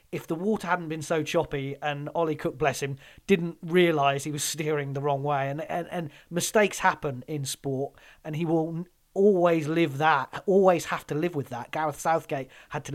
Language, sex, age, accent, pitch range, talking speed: English, male, 30-49, British, 140-165 Hz, 200 wpm